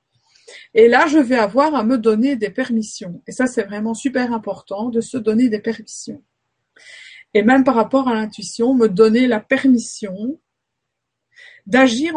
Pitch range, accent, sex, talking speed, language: 205-260 Hz, French, female, 160 wpm, French